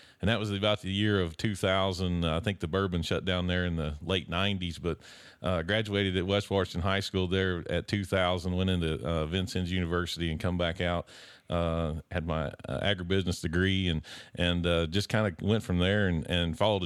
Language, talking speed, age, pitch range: English, 205 wpm, 40-59, 85-100 Hz